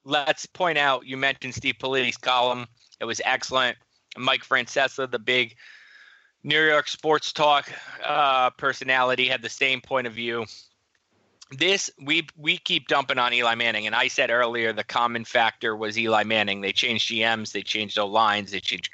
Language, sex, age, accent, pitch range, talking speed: English, male, 30-49, American, 115-140 Hz, 170 wpm